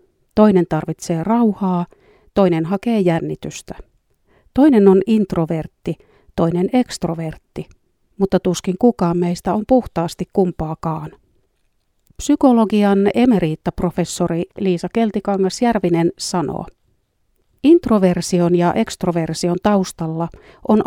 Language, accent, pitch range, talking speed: Finnish, native, 175-210 Hz, 80 wpm